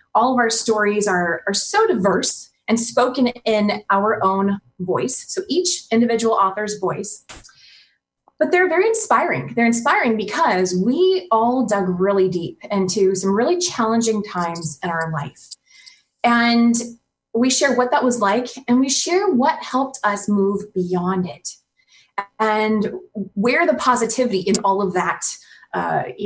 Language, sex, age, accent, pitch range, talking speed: English, female, 20-39, American, 205-275 Hz, 145 wpm